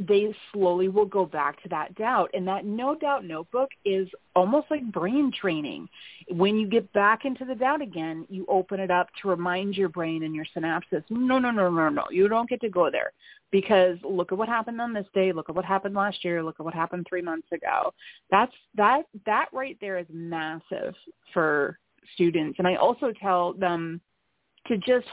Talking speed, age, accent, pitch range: 205 wpm, 30-49, American, 175-235 Hz